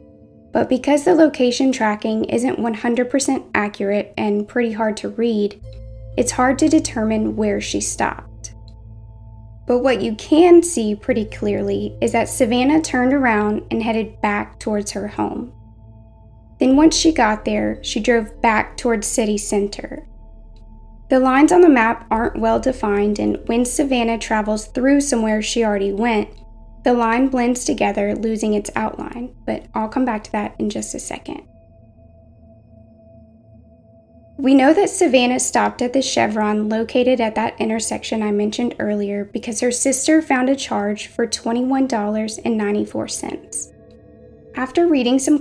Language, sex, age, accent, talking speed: English, female, 20-39, American, 145 wpm